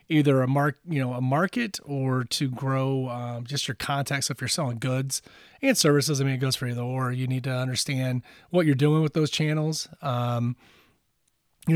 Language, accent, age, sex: English, American, 30-49, male